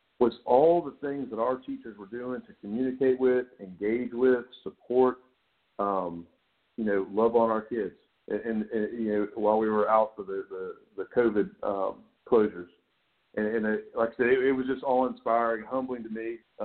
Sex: male